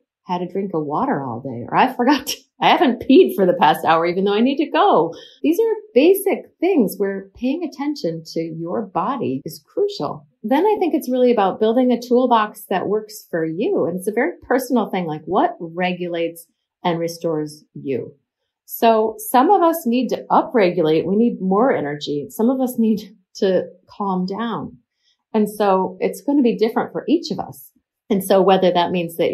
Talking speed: 195 wpm